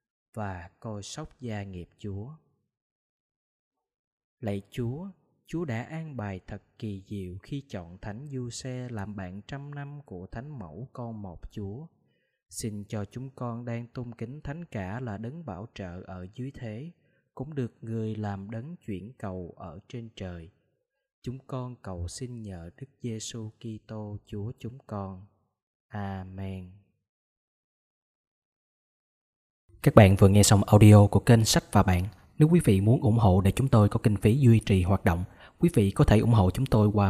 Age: 20-39